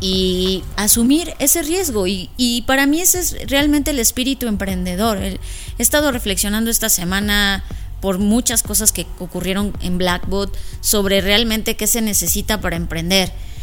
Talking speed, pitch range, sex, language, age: 145 wpm, 200-265 Hz, female, Spanish, 20-39